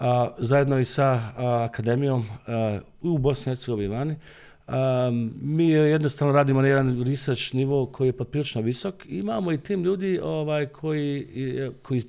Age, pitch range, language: 40-59, 115-145 Hz, Croatian